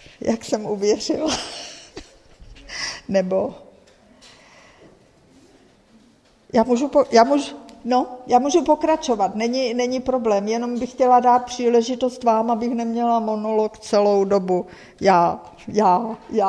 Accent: native